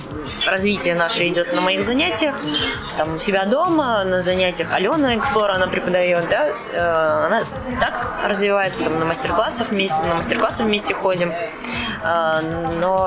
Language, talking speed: Russian, 110 wpm